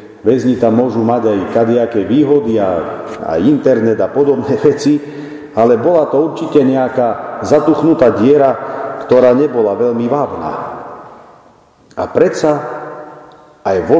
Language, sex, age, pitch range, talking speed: Slovak, male, 50-69, 140-205 Hz, 120 wpm